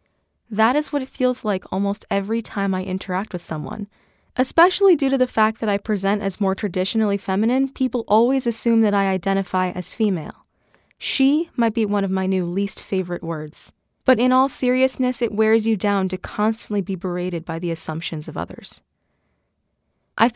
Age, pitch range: 20-39, 180-225 Hz